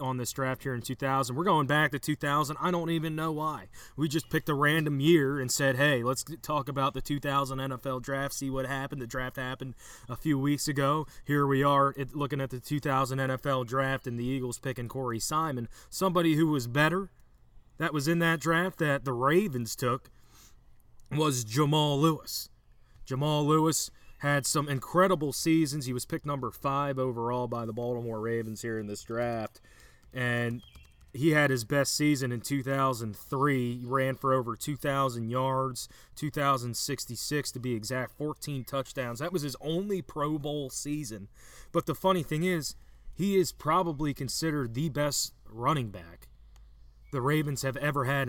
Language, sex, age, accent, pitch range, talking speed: English, male, 30-49, American, 125-150 Hz, 170 wpm